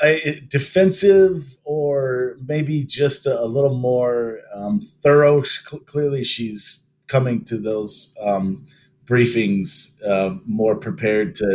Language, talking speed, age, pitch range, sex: English, 120 wpm, 30-49, 95-145 Hz, male